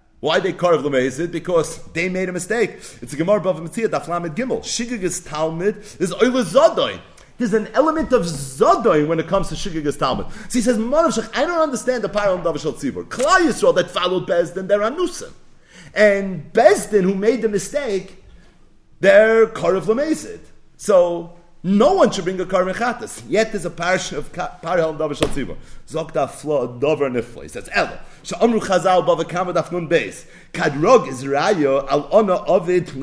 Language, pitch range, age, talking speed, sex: English, 175-235 Hz, 40-59, 135 wpm, male